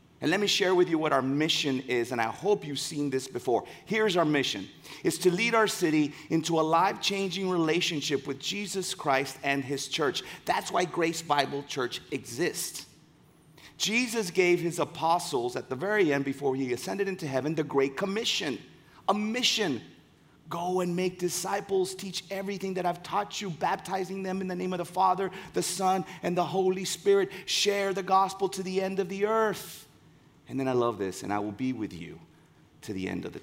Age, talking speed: 30-49, 195 wpm